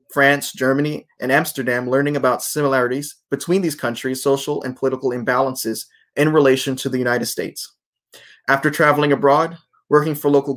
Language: English